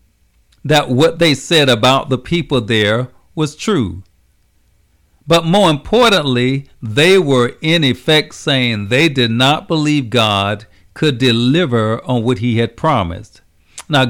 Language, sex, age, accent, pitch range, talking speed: English, male, 50-69, American, 105-145 Hz, 130 wpm